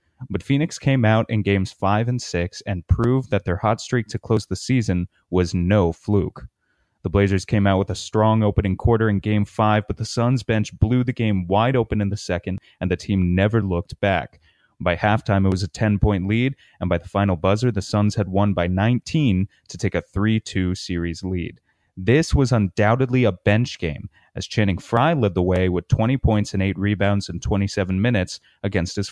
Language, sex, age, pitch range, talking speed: English, male, 30-49, 95-110 Hz, 205 wpm